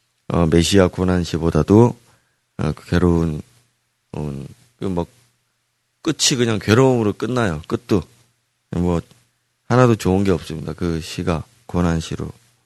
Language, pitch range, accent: Korean, 85-115 Hz, native